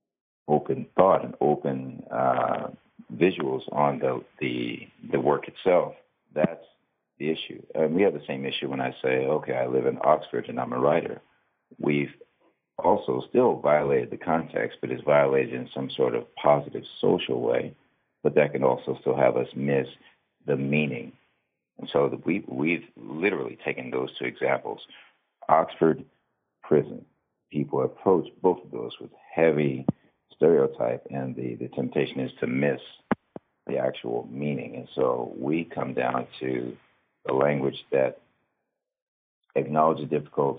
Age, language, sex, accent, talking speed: 60-79, English, male, American, 150 wpm